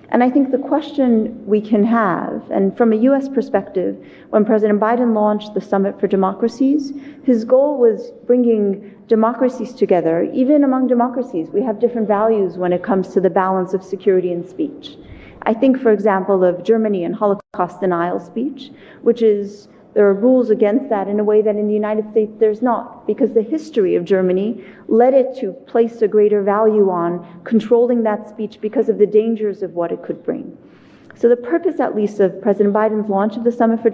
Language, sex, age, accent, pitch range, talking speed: English, female, 40-59, American, 200-245 Hz, 195 wpm